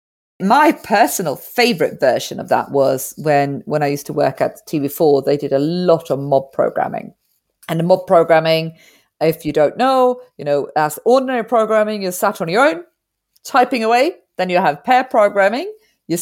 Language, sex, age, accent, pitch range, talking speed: English, female, 40-59, British, 150-220 Hz, 180 wpm